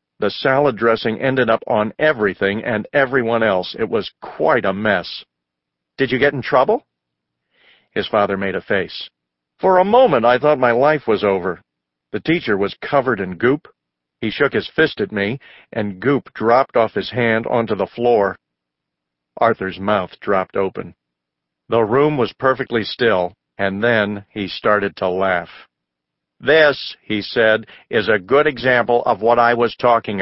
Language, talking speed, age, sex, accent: English, 165 wpm, 50-69, male, American